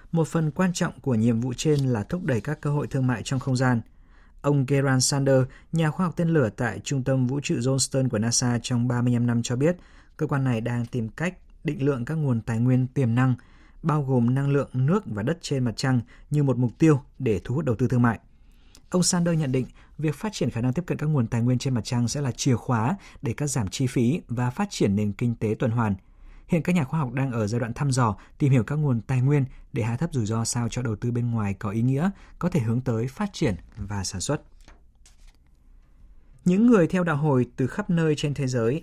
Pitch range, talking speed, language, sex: 115-145 Hz, 250 wpm, Vietnamese, male